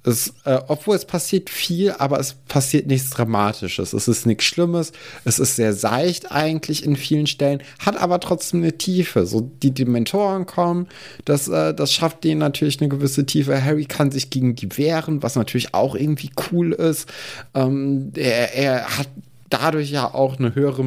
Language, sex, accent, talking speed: German, male, German, 180 wpm